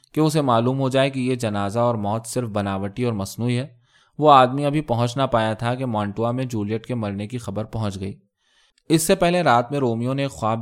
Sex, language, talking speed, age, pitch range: male, Urdu, 230 wpm, 20-39, 110-140 Hz